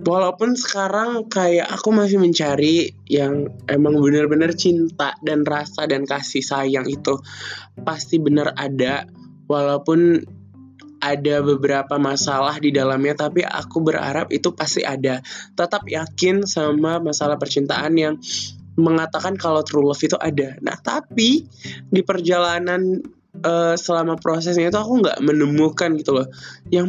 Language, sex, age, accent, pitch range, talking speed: Indonesian, male, 20-39, native, 145-180 Hz, 125 wpm